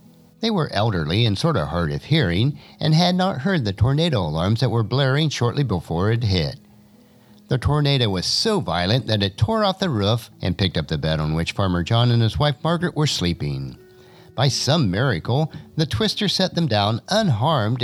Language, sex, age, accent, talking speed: English, male, 50-69, American, 195 wpm